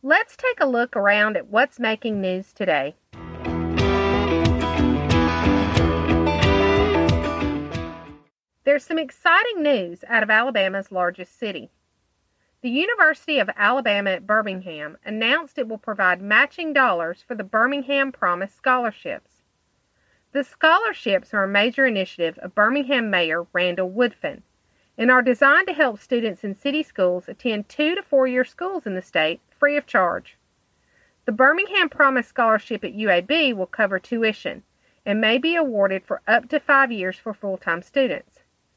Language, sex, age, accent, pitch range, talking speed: English, female, 40-59, American, 185-280 Hz, 135 wpm